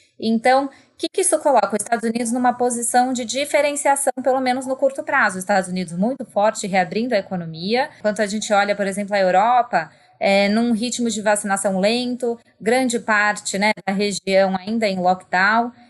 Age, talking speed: 20-39, 185 wpm